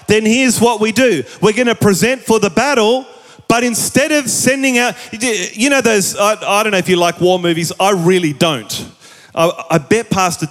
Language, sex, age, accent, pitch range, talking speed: English, male, 30-49, Australian, 160-210 Hz, 200 wpm